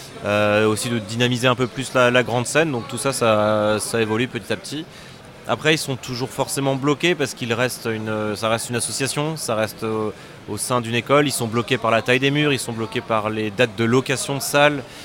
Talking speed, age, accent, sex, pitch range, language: 235 wpm, 20-39, French, male, 110-135 Hz, French